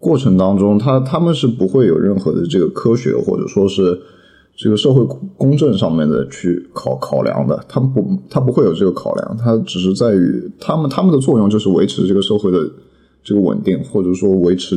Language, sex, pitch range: Chinese, male, 95-130 Hz